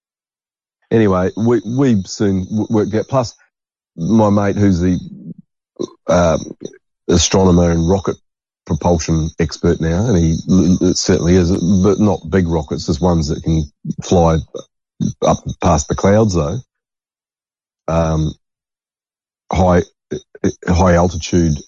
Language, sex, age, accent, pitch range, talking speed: English, male, 40-59, Australian, 85-100 Hz, 110 wpm